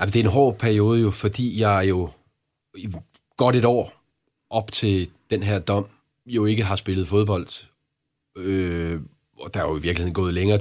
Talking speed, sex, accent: 185 wpm, male, native